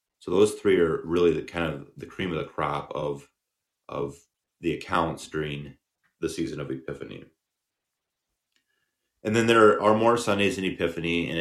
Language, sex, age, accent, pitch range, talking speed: English, male, 30-49, American, 75-85 Hz, 165 wpm